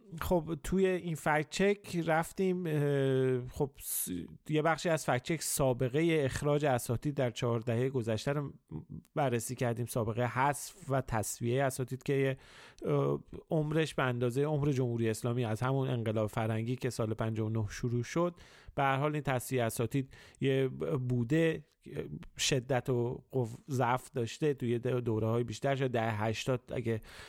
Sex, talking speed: male, 130 wpm